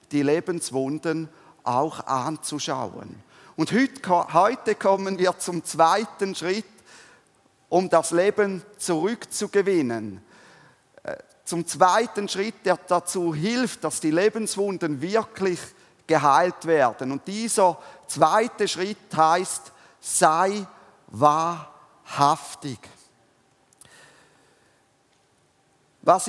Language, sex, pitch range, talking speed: German, male, 160-205 Hz, 80 wpm